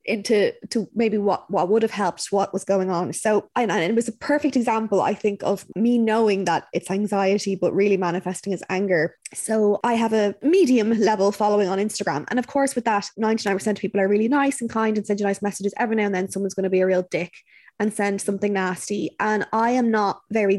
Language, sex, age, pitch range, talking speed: English, female, 20-39, 195-235 Hz, 235 wpm